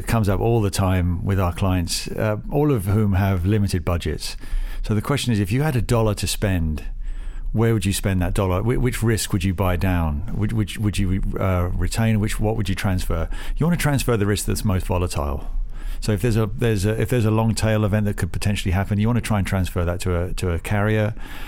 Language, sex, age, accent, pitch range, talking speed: English, male, 50-69, British, 95-115 Hz, 245 wpm